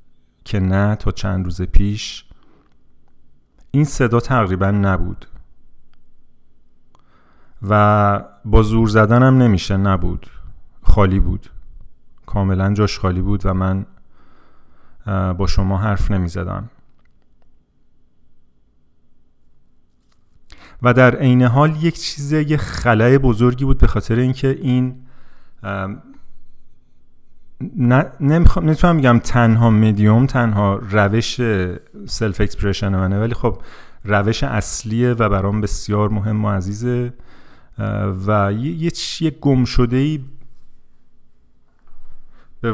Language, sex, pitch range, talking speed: Persian, male, 100-125 Hz, 95 wpm